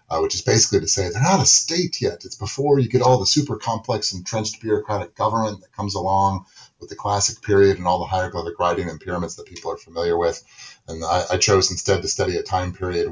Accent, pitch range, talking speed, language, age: American, 90-130 Hz, 235 wpm, English, 30-49